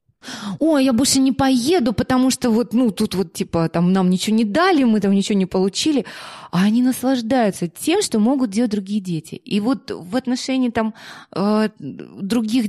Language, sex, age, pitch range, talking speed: Russian, female, 20-39, 180-235 Hz, 175 wpm